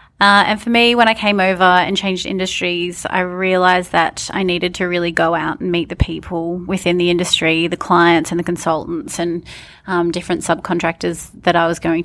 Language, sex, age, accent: English, female, 20-39, Australian